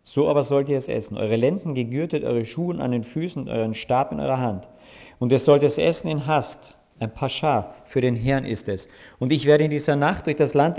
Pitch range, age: 110-140 Hz, 50-69